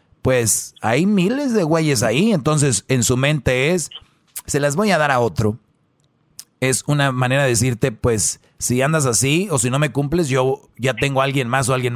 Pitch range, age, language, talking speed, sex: 125-155 Hz, 40-59, Spanish, 205 wpm, male